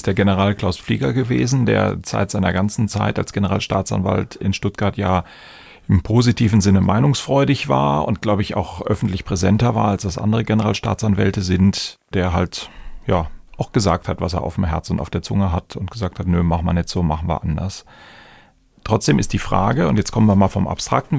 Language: German